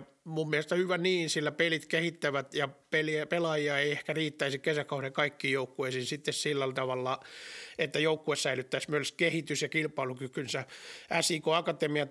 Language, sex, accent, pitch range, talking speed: Finnish, male, native, 140-165 Hz, 130 wpm